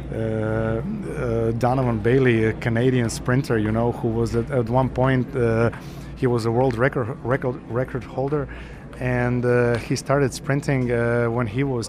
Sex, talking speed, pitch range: male, 165 wpm, 115-130 Hz